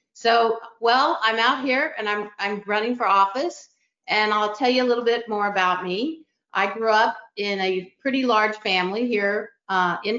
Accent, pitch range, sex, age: American, 190-230 Hz, female, 50-69